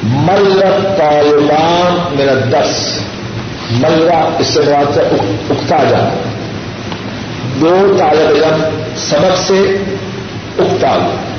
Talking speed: 85 wpm